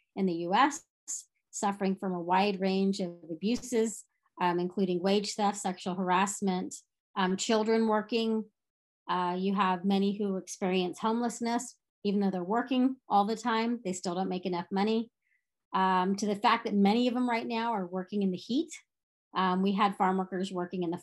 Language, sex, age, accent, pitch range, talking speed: English, female, 30-49, American, 185-225 Hz, 175 wpm